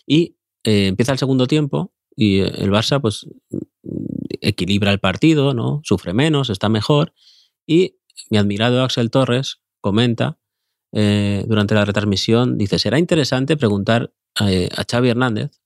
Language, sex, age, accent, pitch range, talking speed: Spanish, male, 30-49, Spanish, 100-135 Hz, 140 wpm